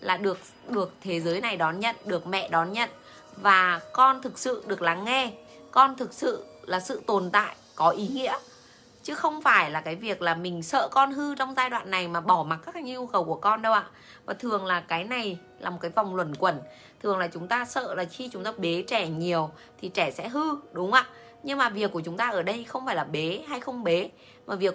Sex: female